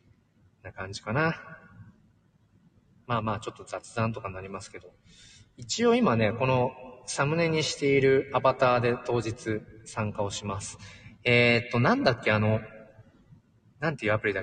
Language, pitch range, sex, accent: Japanese, 105-130 Hz, male, native